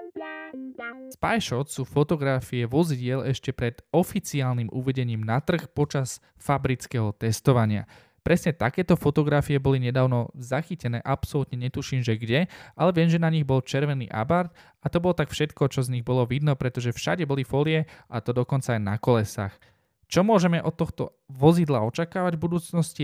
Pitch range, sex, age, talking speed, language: 125-160 Hz, male, 10-29, 155 wpm, Slovak